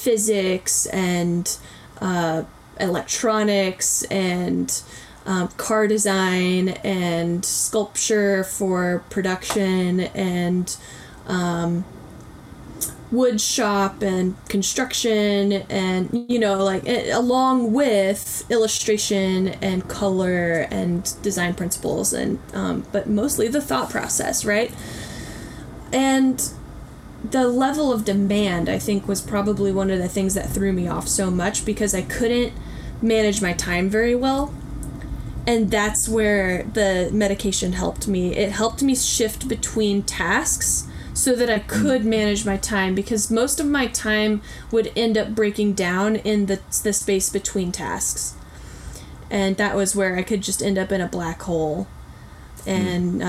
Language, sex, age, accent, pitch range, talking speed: English, female, 10-29, American, 185-220 Hz, 130 wpm